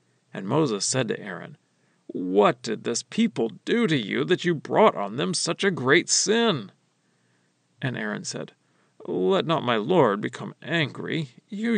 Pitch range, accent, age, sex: 125-190 Hz, American, 40-59, male